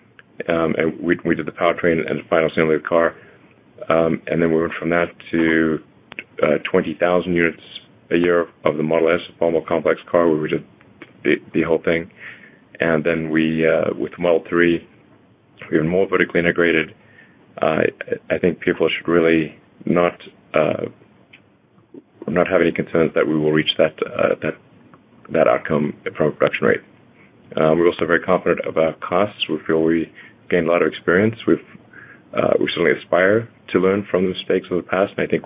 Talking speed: 190 wpm